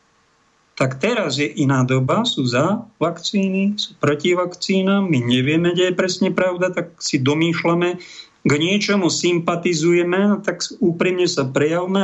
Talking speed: 135 wpm